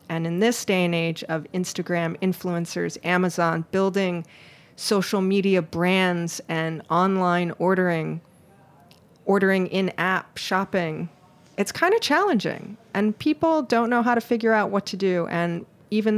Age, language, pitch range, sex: 40-59, English, 170-200 Hz, female